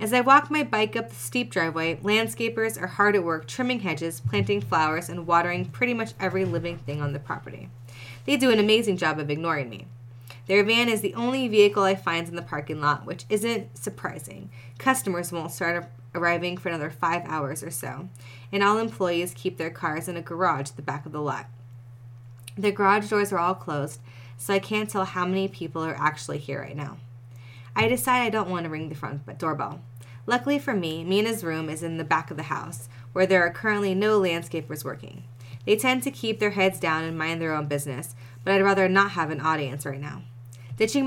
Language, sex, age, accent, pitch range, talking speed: English, female, 20-39, American, 140-195 Hz, 210 wpm